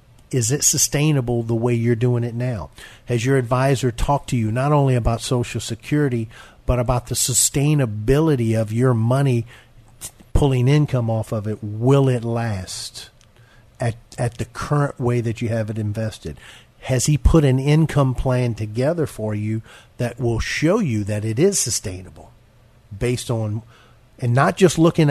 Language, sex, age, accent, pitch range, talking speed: English, male, 50-69, American, 115-135 Hz, 165 wpm